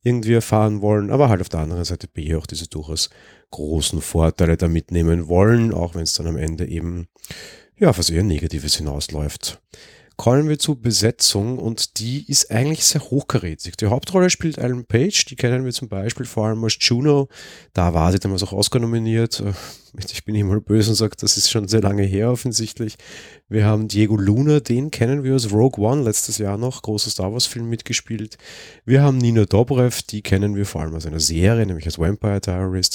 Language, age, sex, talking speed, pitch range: German, 30-49, male, 200 wpm, 90-120 Hz